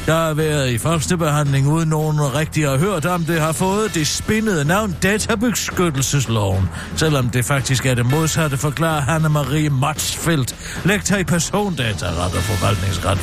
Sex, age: male, 60-79